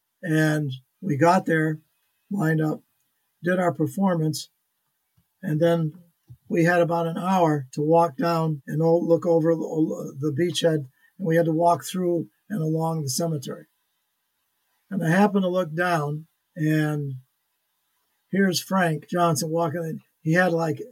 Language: English